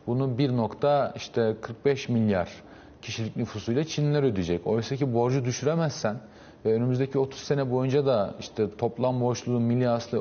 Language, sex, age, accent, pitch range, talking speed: Turkish, male, 40-59, native, 110-140 Hz, 140 wpm